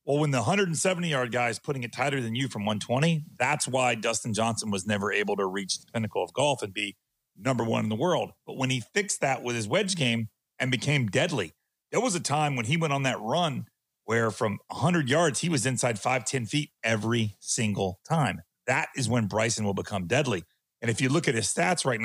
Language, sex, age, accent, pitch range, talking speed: English, male, 40-59, American, 110-145 Hz, 225 wpm